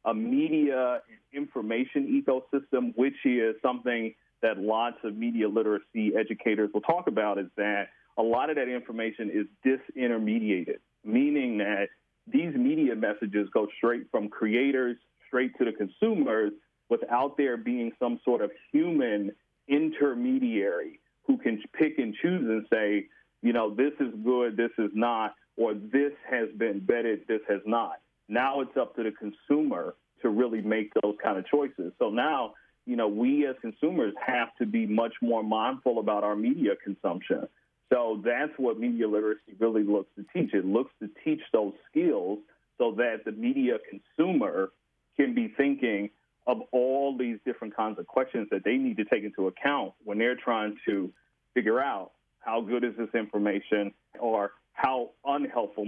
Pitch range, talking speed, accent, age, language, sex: 110-145 Hz, 160 wpm, American, 30-49, English, male